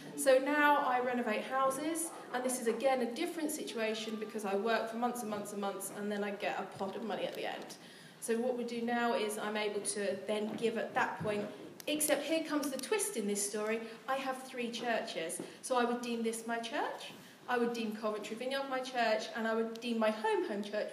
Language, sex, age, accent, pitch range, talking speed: English, female, 40-59, British, 210-260 Hz, 230 wpm